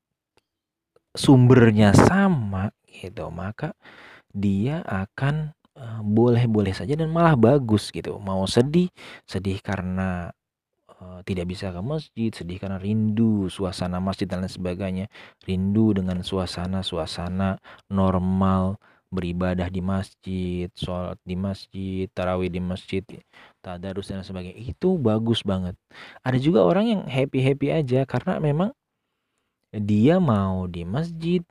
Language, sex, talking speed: Indonesian, male, 115 wpm